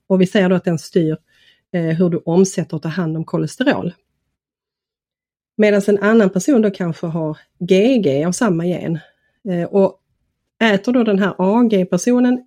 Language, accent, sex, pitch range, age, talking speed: Swedish, native, female, 170-205 Hz, 30-49, 155 wpm